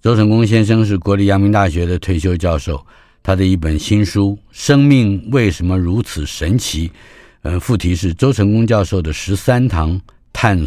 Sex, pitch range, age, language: male, 85-110 Hz, 50-69, Chinese